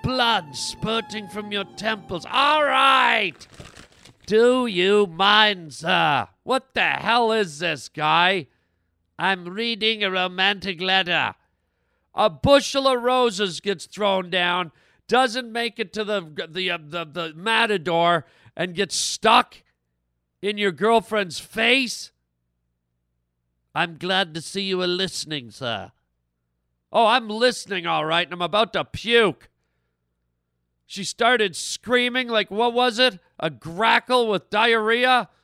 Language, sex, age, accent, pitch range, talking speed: English, male, 50-69, American, 150-210 Hz, 125 wpm